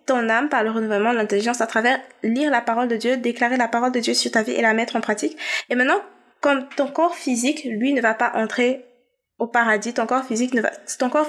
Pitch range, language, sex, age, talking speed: 225-280 Hz, French, female, 20-39, 255 wpm